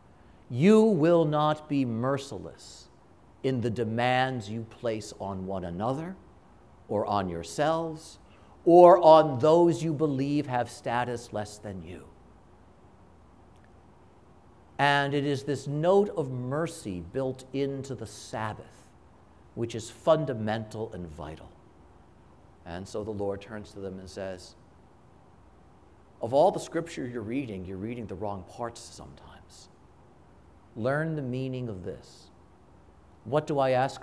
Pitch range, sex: 95-140 Hz, male